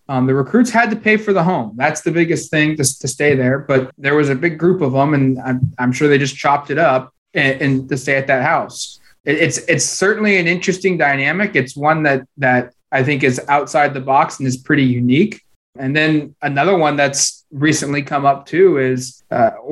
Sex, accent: male, American